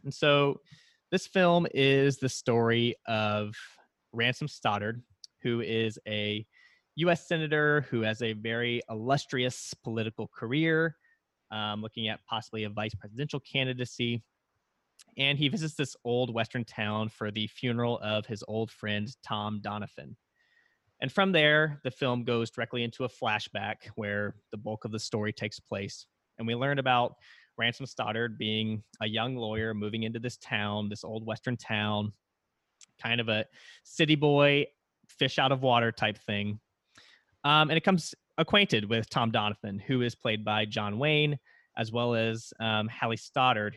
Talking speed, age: 155 wpm, 20-39